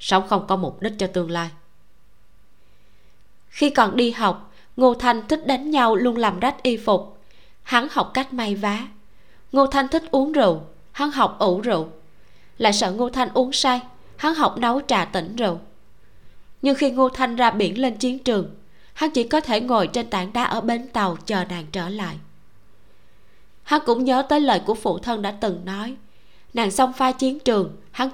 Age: 20-39